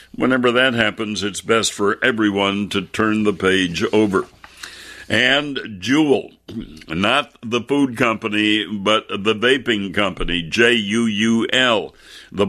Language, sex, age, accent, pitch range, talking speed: English, male, 60-79, American, 100-115 Hz, 115 wpm